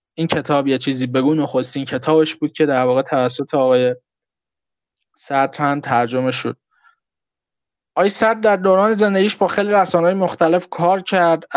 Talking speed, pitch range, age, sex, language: 145 wpm, 145-175 Hz, 20-39, male, Persian